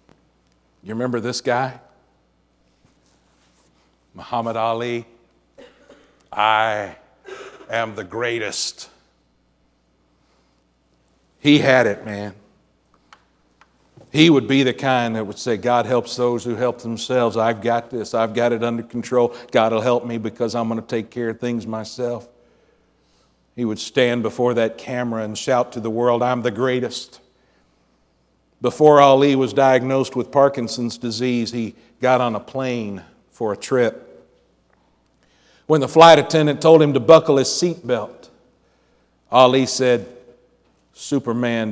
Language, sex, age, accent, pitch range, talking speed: English, male, 60-79, American, 100-125 Hz, 130 wpm